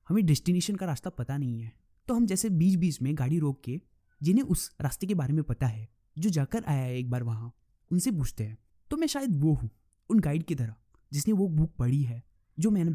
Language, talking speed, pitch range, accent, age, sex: Hindi, 230 wpm, 125-185 Hz, native, 20-39, male